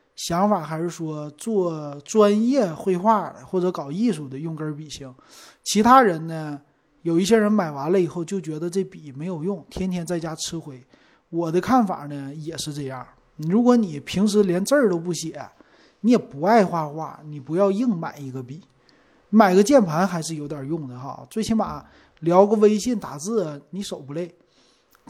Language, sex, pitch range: Chinese, male, 155-210 Hz